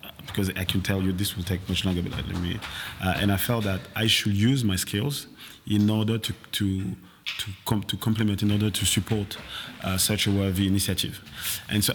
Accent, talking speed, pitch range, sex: French, 210 wpm, 95-110 Hz, male